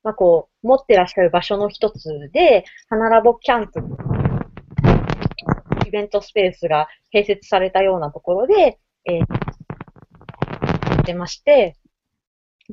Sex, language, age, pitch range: female, Japanese, 30-49, 180-295 Hz